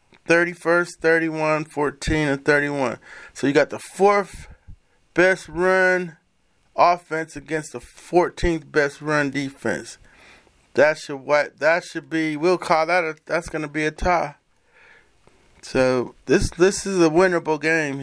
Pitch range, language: 140-180 Hz, English